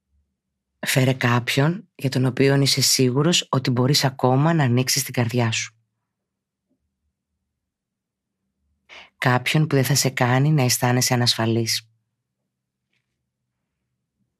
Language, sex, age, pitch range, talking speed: Greek, female, 30-49, 115-130 Hz, 100 wpm